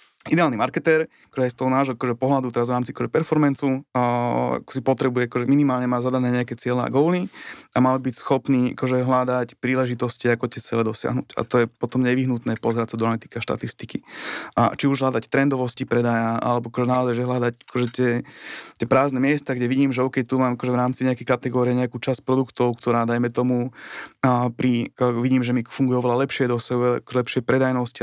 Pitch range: 120-130 Hz